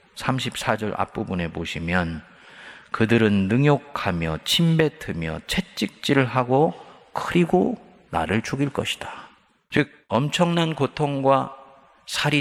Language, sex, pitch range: Korean, male, 100-145 Hz